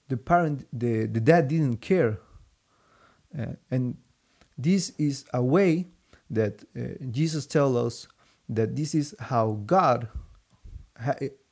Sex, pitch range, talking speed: male, 110-130 Hz, 125 wpm